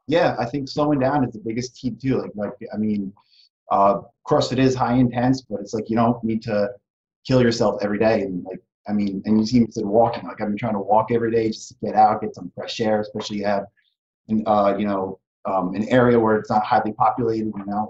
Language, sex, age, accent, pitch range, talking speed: English, male, 30-49, American, 105-130 Hz, 250 wpm